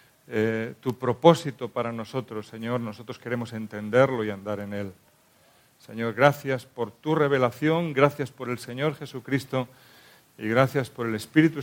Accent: Spanish